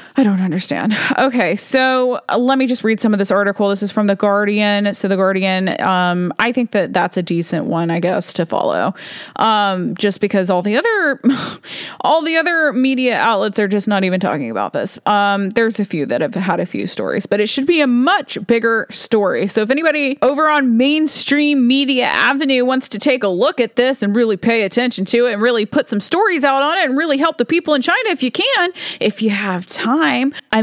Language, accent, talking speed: English, American, 220 wpm